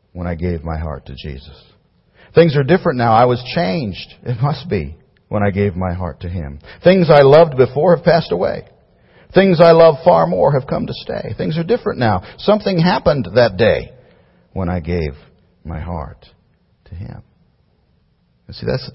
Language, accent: English, American